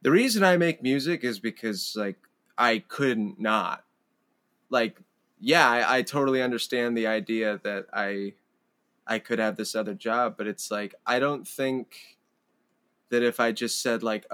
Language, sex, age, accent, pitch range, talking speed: English, male, 20-39, American, 110-125 Hz, 165 wpm